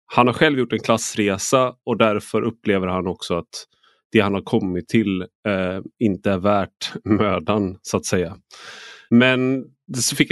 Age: 30-49